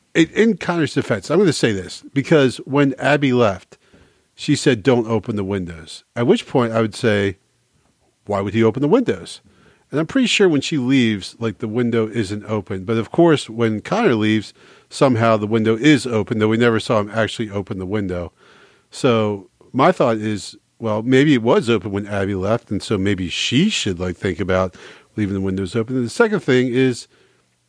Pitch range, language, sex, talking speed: 100-130 Hz, English, male, 195 wpm